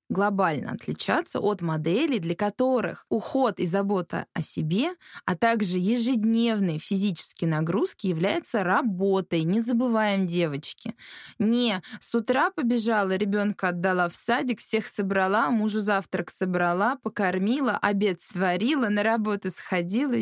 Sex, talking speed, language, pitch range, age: female, 120 wpm, Russian, 180-235 Hz, 20-39